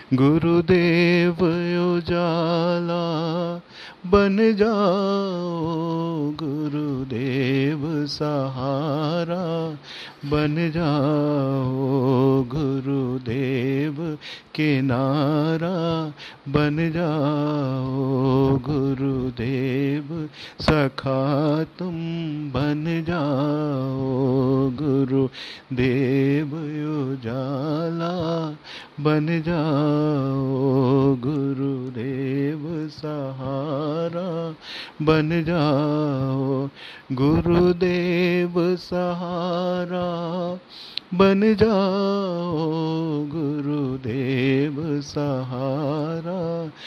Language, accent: Hindi, native